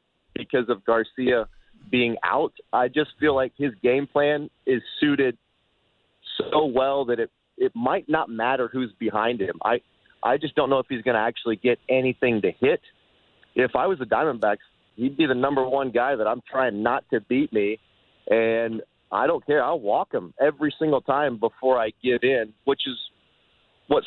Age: 40-59